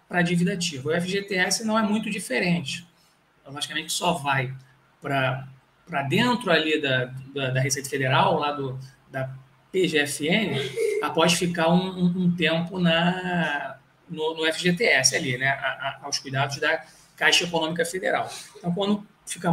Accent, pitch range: Brazilian, 150-185 Hz